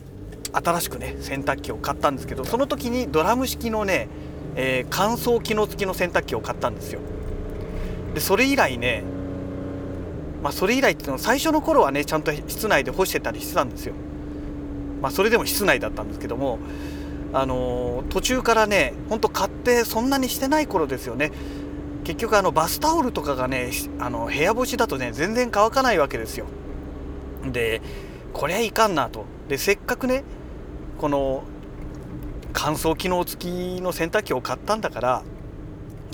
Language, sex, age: Japanese, male, 40-59